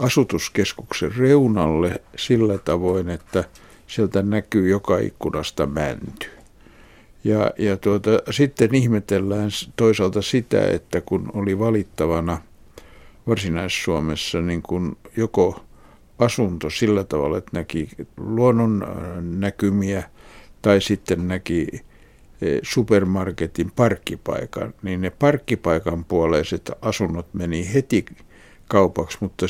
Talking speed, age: 95 wpm, 60-79